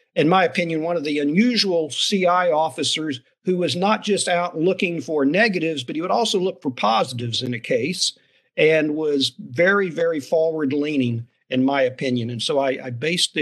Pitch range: 140-175 Hz